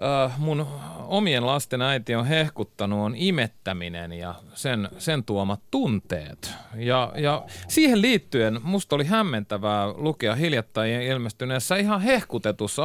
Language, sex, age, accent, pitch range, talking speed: Finnish, male, 30-49, native, 105-155 Hz, 115 wpm